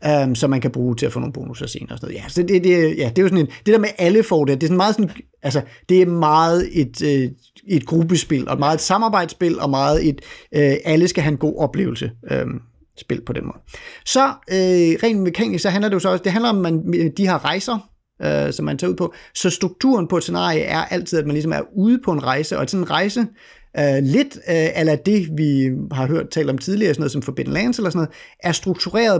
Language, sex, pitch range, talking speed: Danish, male, 145-195 Hz, 255 wpm